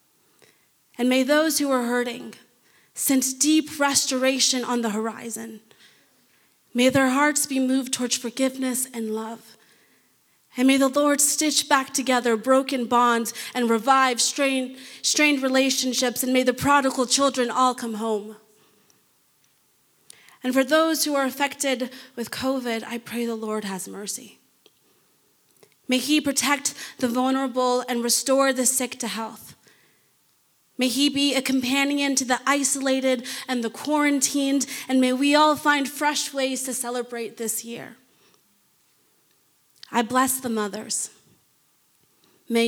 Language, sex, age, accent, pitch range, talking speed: English, female, 30-49, American, 230-270 Hz, 130 wpm